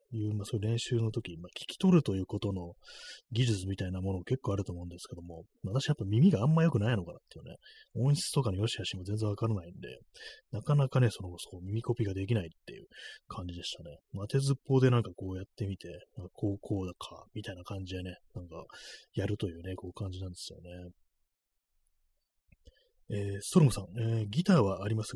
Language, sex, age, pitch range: Japanese, male, 20-39, 95-135 Hz